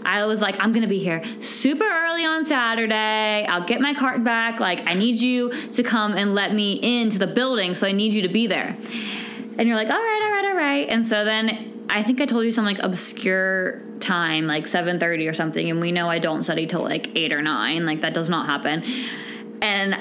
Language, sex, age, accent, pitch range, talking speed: English, female, 20-39, American, 210-255 Hz, 235 wpm